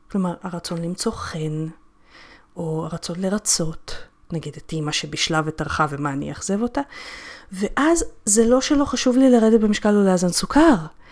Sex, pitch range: female, 175-250 Hz